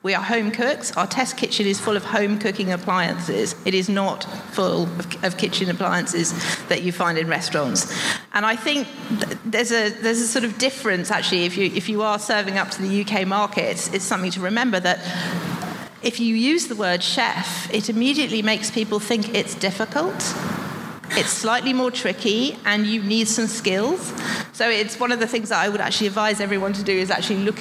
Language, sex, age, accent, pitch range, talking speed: English, female, 40-59, British, 185-230 Hz, 200 wpm